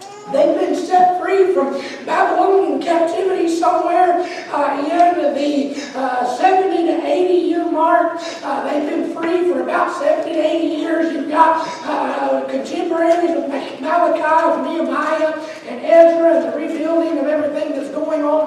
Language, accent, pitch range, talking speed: English, American, 290-340 Hz, 145 wpm